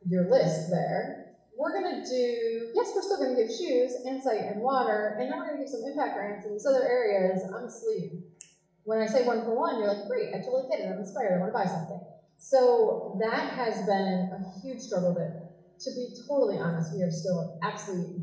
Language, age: English, 30-49